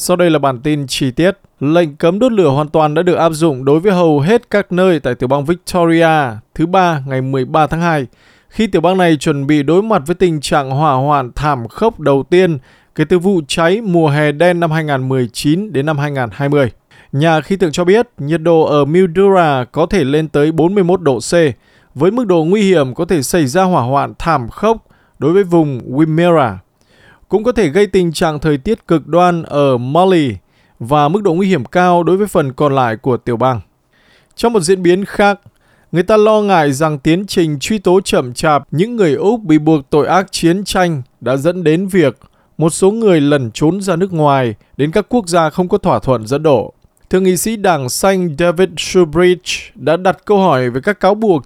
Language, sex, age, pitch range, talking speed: Vietnamese, male, 20-39, 145-185 Hz, 215 wpm